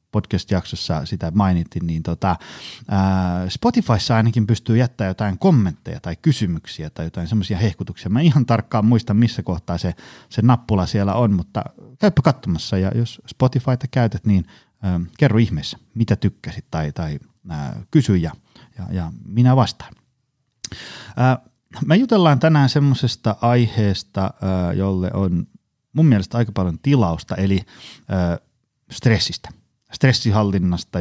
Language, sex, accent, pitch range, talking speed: Finnish, male, native, 95-125 Hz, 130 wpm